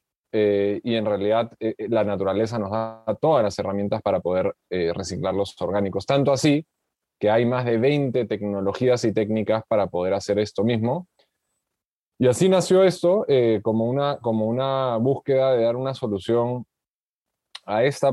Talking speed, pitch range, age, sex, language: 160 wpm, 100-130 Hz, 20-39, male, Spanish